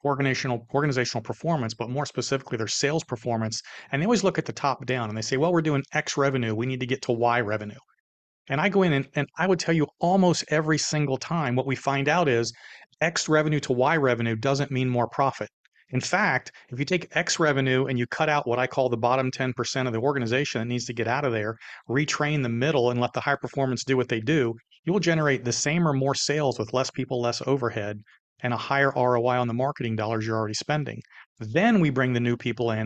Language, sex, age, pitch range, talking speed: English, male, 40-59, 120-145 Hz, 235 wpm